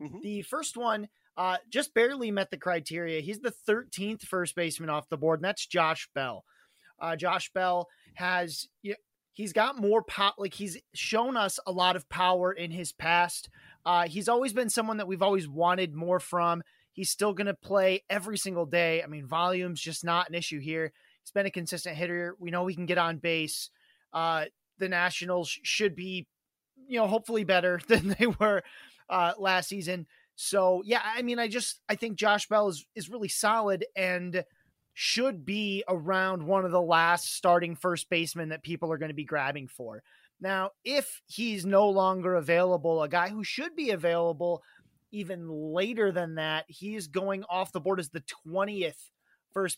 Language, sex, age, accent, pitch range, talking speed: English, male, 30-49, American, 170-210 Hz, 180 wpm